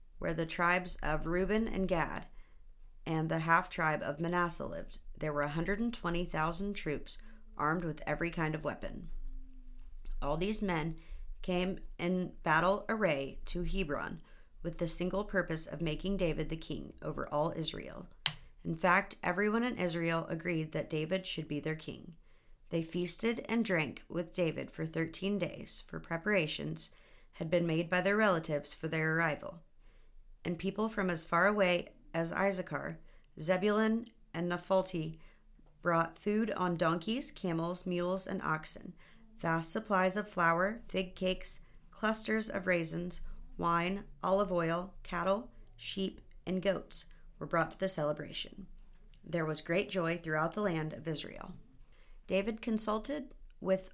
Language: English